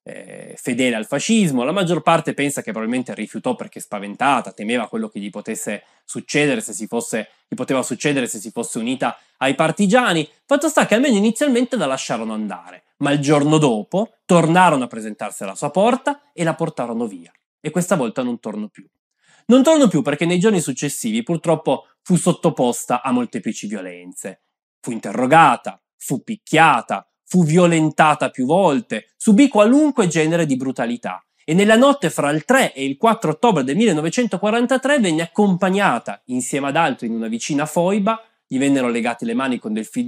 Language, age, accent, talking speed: Italian, 20-39, native, 170 wpm